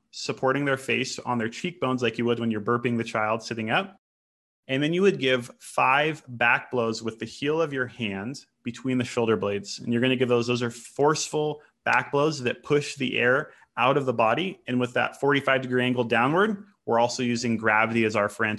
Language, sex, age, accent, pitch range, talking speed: English, male, 30-49, American, 115-135 Hz, 215 wpm